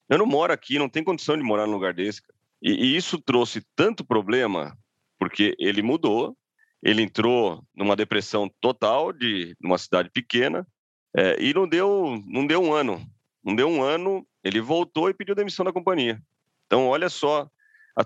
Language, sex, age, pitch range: Portuguese, male, 40-59, 110-150 Hz